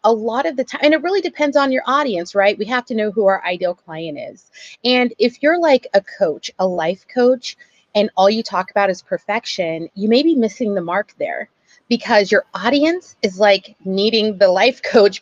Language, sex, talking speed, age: English, female, 215 wpm, 30-49